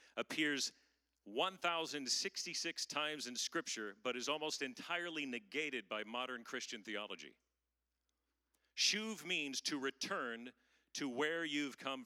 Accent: American